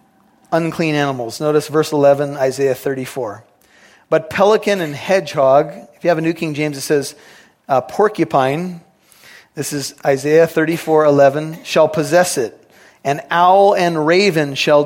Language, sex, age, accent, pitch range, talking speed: English, male, 40-59, American, 140-170 Hz, 135 wpm